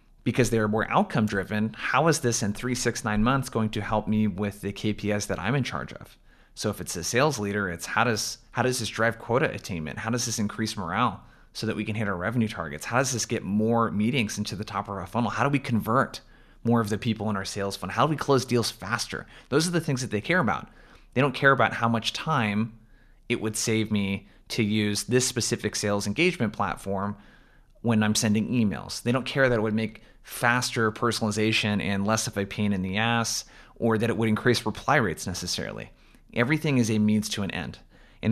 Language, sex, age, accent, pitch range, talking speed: English, male, 20-39, American, 105-120 Hz, 230 wpm